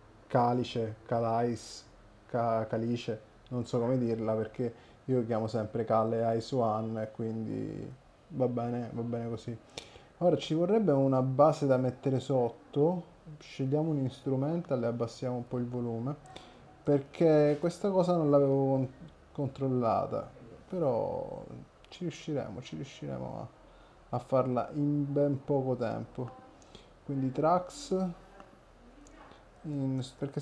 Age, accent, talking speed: 20-39, native, 115 wpm